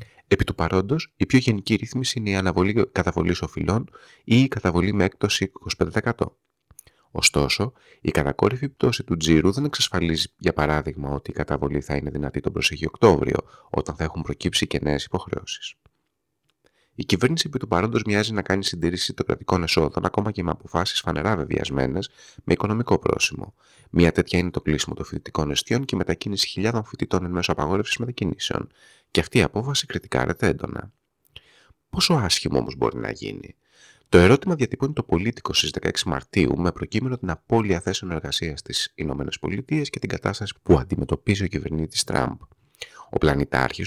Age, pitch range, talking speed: 30-49, 75-110 Hz, 165 wpm